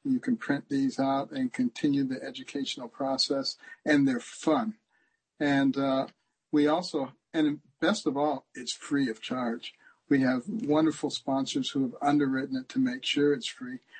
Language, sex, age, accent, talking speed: English, male, 60-79, American, 165 wpm